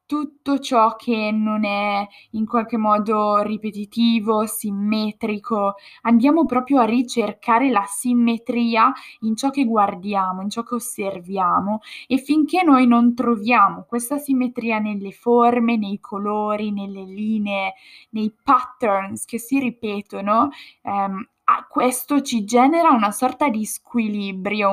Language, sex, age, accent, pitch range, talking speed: Italian, female, 10-29, native, 205-245 Hz, 120 wpm